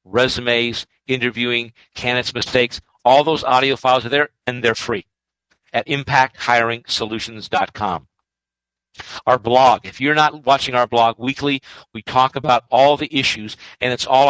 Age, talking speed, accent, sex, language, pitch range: 50-69, 140 wpm, American, male, English, 120-150 Hz